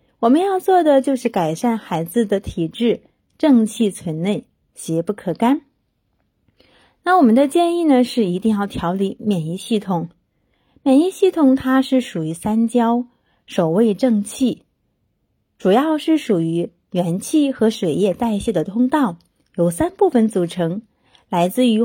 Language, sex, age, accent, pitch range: Chinese, female, 30-49, native, 185-270 Hz